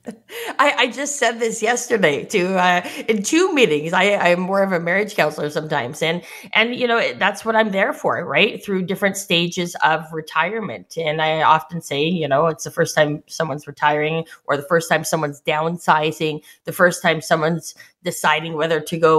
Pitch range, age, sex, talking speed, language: 160-200 Hz, 20-39, female, 190 wpm, English